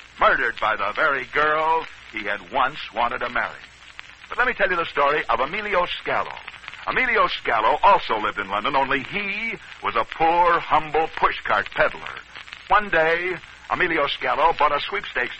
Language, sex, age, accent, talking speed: English, male, 60-79, American, 165 wpm